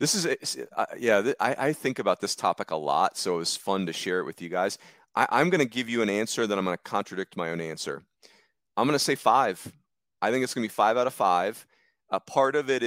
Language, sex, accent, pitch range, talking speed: English, male, American, 100-120 Hz, 260 wpm